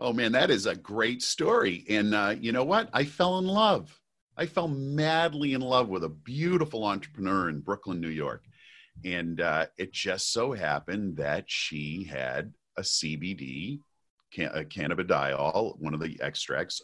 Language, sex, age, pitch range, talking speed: English, male, 40-59, 80-105 Hz, 165 wpm